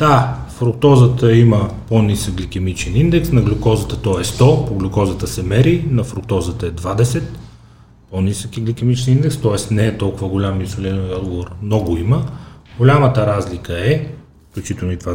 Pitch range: 95-120 Hz